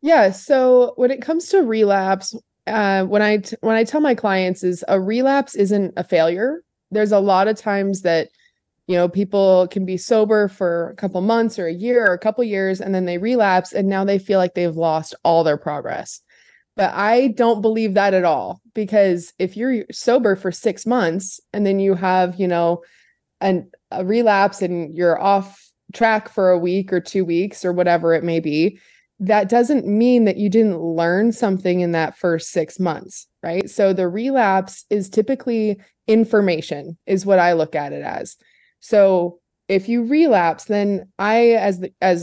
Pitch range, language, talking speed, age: 180-225 Hz, English, 185 wpm, 20-39